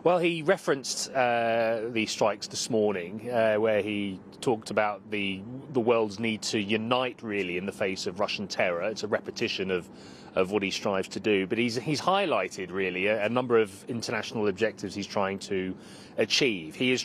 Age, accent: 30-49, British